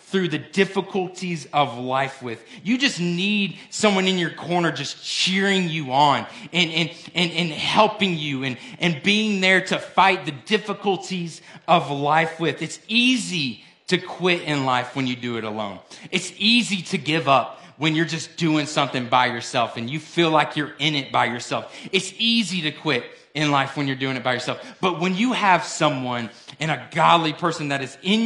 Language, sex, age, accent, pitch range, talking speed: English, male, 30-49, American, 145-185 Hz, 190 wpm